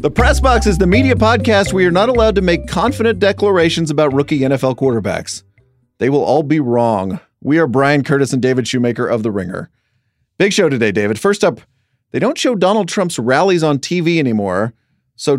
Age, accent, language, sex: 40-59, American, English, male